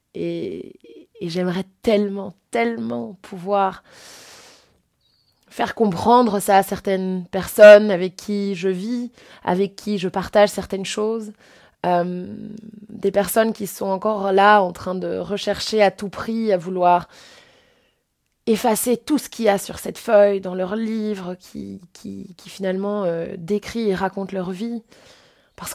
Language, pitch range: French, 185-215 Hz